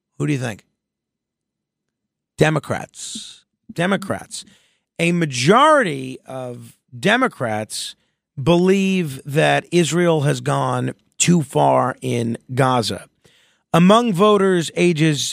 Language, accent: English, American